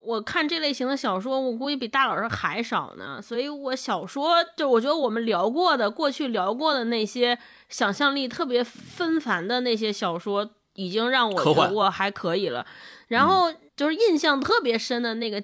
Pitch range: 235-325 Hz